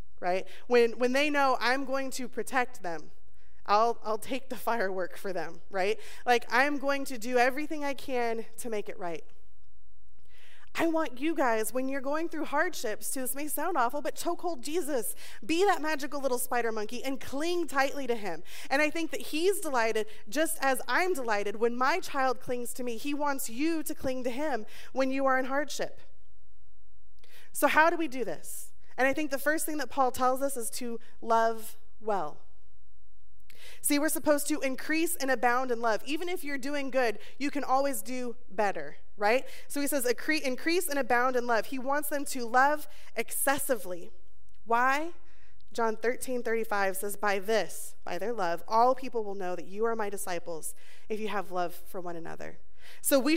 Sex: female